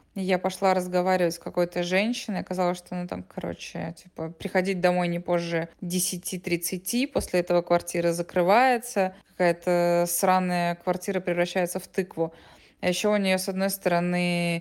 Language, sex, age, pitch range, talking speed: Russian, female, 20-39, 175-210 Hz, 130 wpm